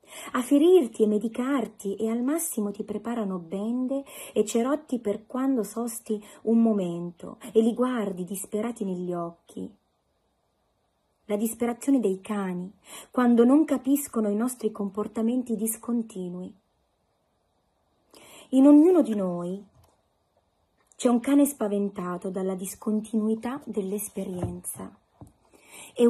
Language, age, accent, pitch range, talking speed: Italian, 30-49, native, 195-240 Hz, 105 wpm